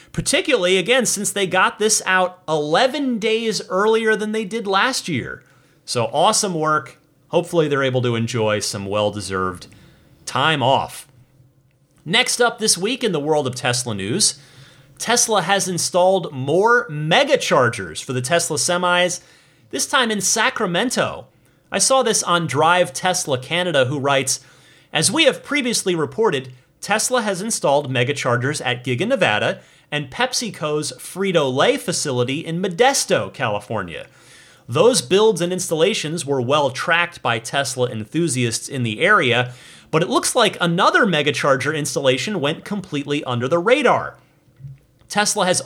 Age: 30-49